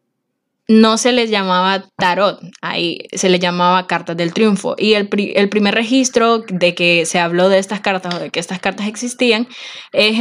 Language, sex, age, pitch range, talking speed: Spanish, female, 10-29, 185-235 Hz, 190 wpm